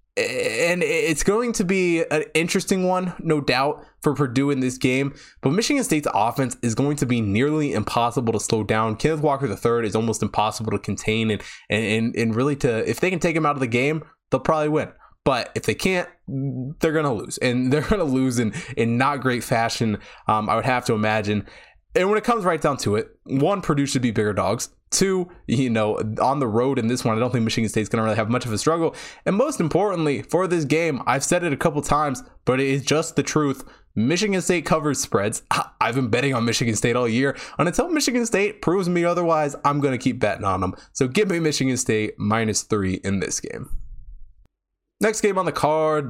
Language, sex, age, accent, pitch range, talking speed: English, male, 20-39, American, 110-155 Hz, 220 wpm